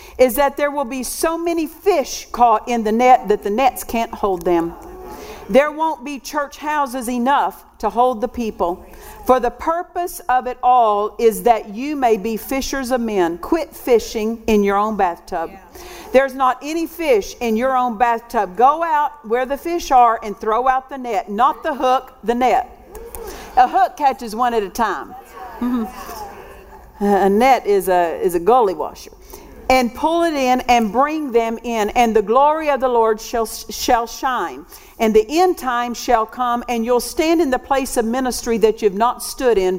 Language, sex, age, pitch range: English, female, 50-69, 225-295 Hz